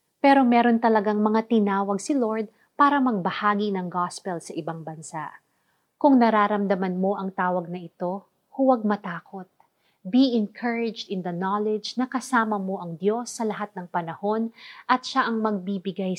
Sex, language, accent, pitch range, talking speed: female, Filipino, native, 185-230 Hz, 150 wpm